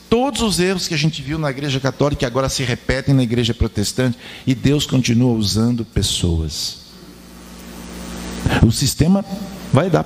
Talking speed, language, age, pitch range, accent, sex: 155 wpm, Portuguese, 50-69, 95-135 Hz, Brazilian, male